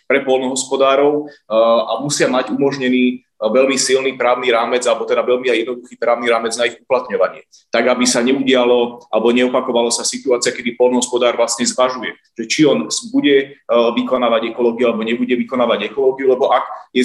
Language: Slovak